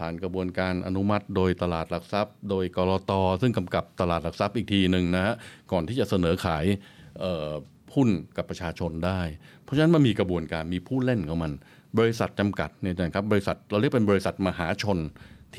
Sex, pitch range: male, 95-115 Hz